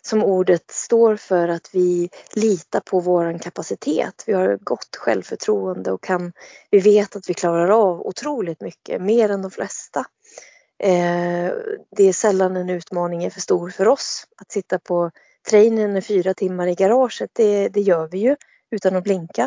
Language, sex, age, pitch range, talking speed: Swedish, female, 20-39, 185-250 Hz, 175 wpm